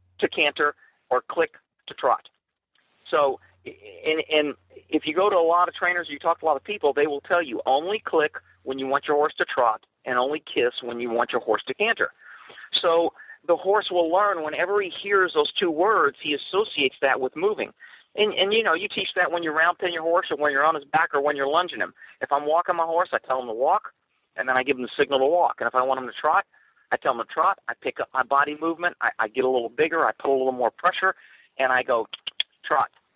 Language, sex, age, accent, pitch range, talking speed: English, male, 40-59, American, 145-215 Hz, 255 wpm